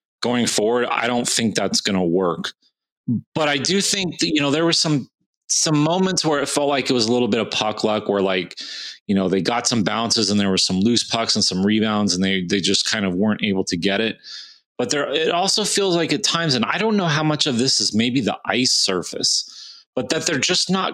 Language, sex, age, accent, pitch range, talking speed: English, male, 30-49, American, 100-145 Hz, 250 wpm